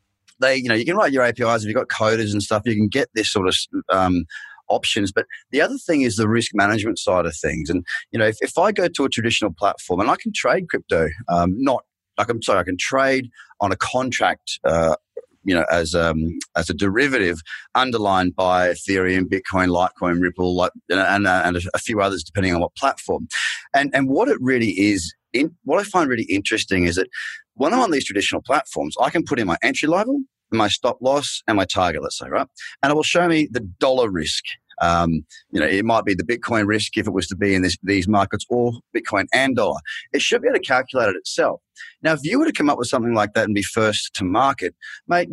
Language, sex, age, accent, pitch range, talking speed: English, male, 30-49, Australian, 95-130 Hz, 235 wpm